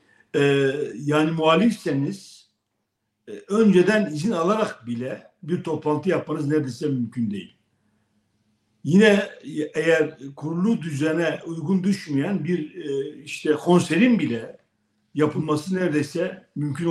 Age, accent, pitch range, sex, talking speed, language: 60-79, native, 135-175 Hz, male, 100 wpm, Turkish